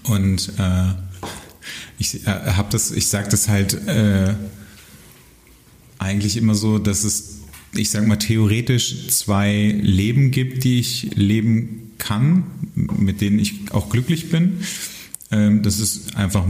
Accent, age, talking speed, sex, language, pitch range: German, 30-49, 125 wpm, male, German, 95-115 Hz